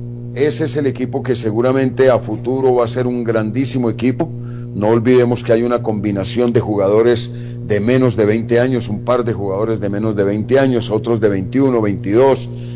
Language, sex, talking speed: Spanish, male, 190 wpm